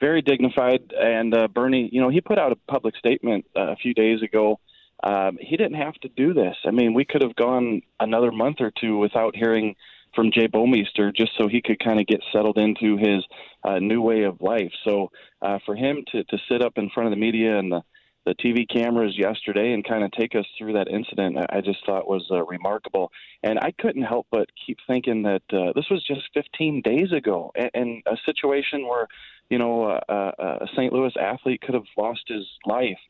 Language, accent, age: English, American, 30-49